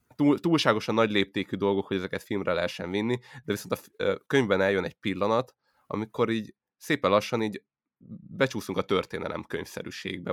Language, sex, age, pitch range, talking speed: Hungarian, male, 20-39, 95-110 Hz, 145 wpm